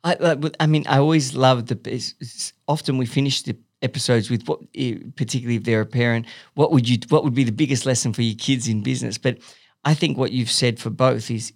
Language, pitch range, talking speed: English, 125-150 Hz, 230 wpm